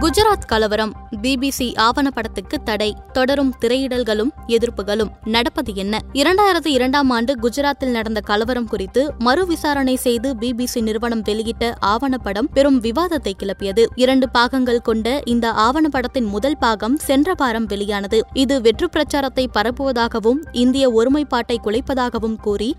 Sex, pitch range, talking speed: female, 225-275 Hz, 115 wpm